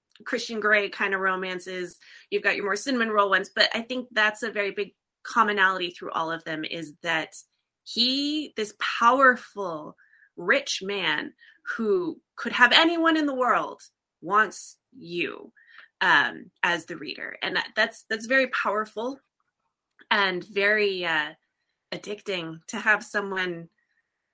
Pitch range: 190-260 Hz